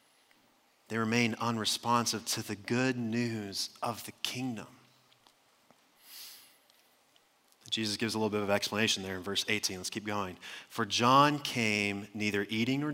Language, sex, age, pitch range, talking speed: English, male, 30-49, 105-145 Hz, 140 wpm